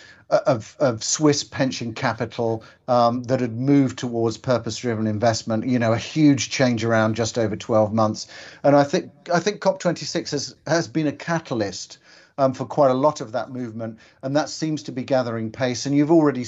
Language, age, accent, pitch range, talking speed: Dutch, 50-69, British, 115-135 Hz, 190 wpm